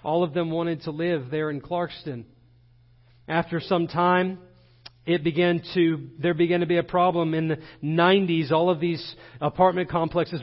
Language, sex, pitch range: English, male, 120-170 Hz